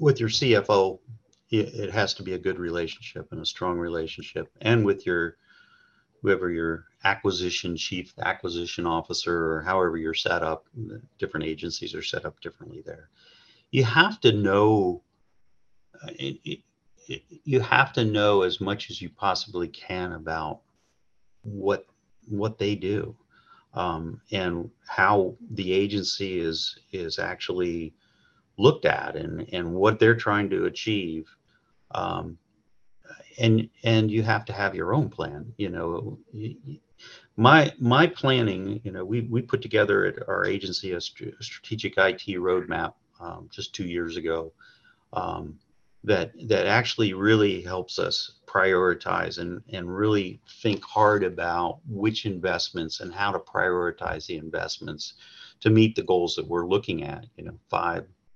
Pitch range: 85-110 Hz